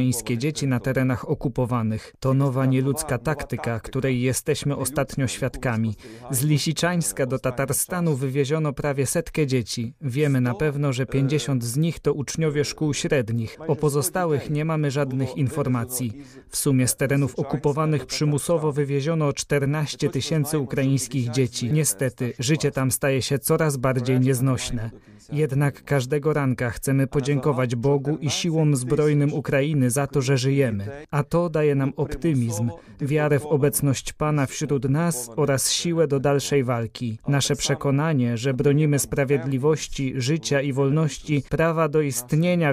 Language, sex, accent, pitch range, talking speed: Polish, male, native, 130-150 Hz, 135 wpm